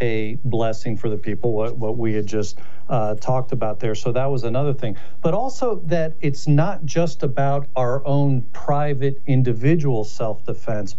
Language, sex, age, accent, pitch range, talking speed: English, male, 50-69, American, 115-140 Hz, 170 wpm